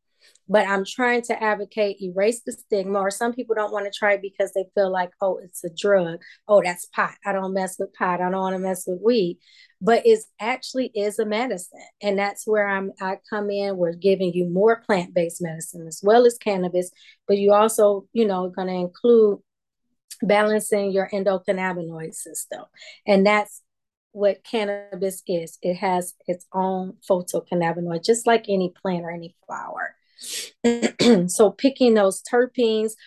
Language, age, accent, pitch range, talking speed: English, 30-49, American, 180-215 Hz, 170 wpm